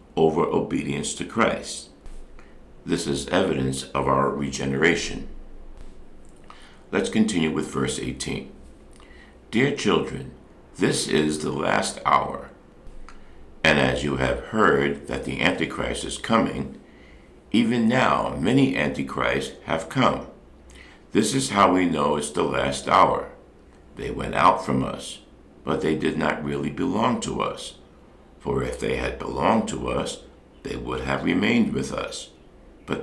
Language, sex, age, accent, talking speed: English, male, 60-79, American, 135 wpm